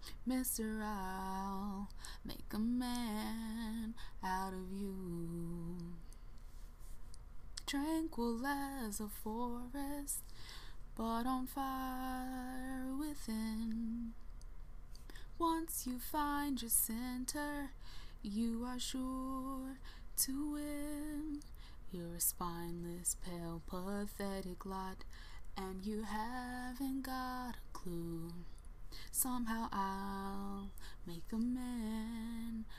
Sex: female